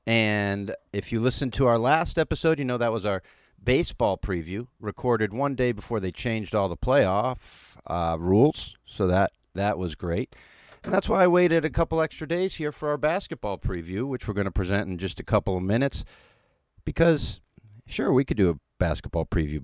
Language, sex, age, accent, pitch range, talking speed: English, male, 50-69, American, 90-140 Hz, 195 wpm